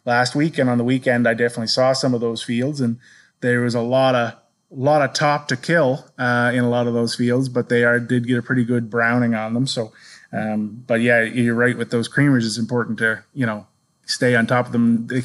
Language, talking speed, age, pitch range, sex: English, 250 wpm, 30-49, 120-140 Hz, male